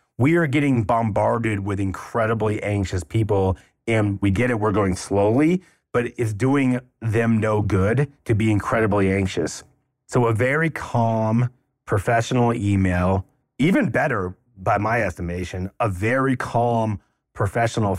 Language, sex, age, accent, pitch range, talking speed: English, male, 30-49, American, 95-125 Hz, 135 wpm